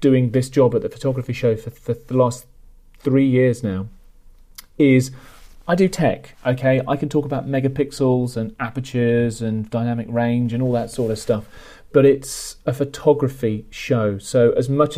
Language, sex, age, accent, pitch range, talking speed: English, male, 40-59, British, 120-140 Hz, 170 wpm